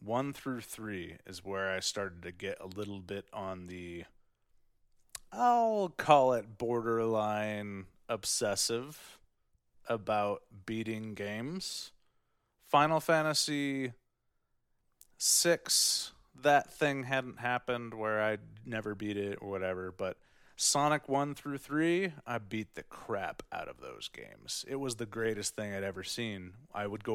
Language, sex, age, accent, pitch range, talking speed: English, male, 30-49, American, 95-120 Hz, 135 wpm